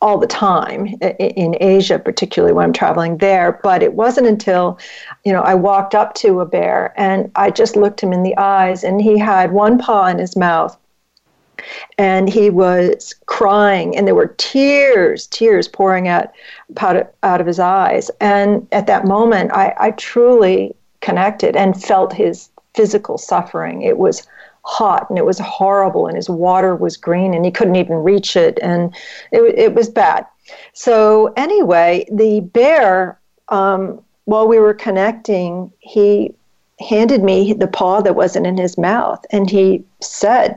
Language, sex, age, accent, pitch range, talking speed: English, female, 40-59, American, 185-225 Hz, 165 wpm